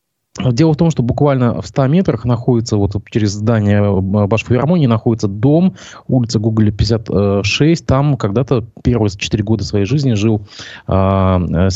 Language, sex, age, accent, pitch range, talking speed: Russian, male, 20-39, native, 105-140 Hz, 140 wpm